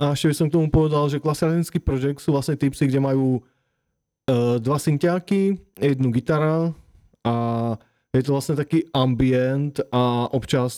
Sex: male